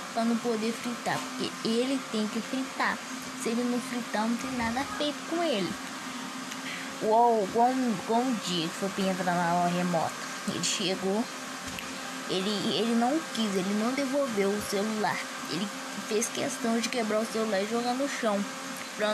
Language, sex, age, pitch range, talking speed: Arabic, female, 10-29, 205-240 Hz, 160 wpm